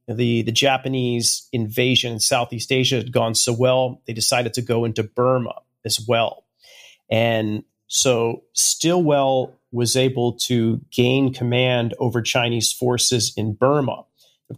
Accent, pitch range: American, 115-130 Hz